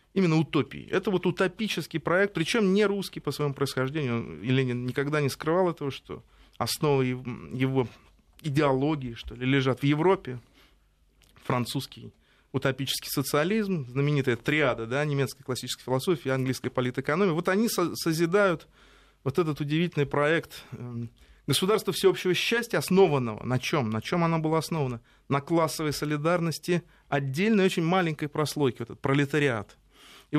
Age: 30-49